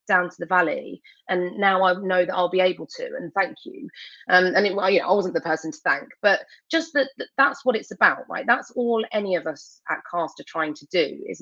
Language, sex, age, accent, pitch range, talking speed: English, female, 30-49, British, 160-210 Hz, 250 wpm